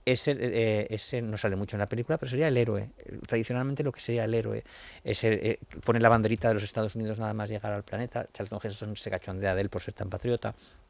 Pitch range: 110-130 Hz